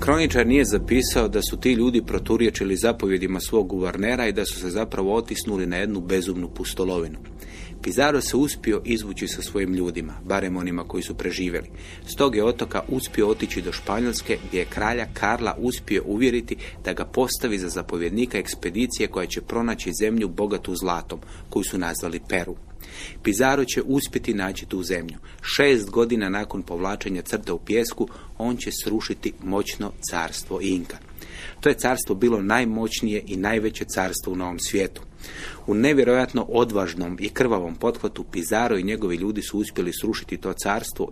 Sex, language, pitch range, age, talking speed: male, Croatian, 90-110 Hz, 30-49, 155 wpm